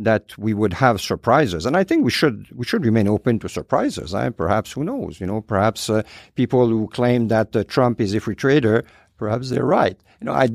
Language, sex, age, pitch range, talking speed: English, male, 50-69, 95-115 Hz, 235 wpm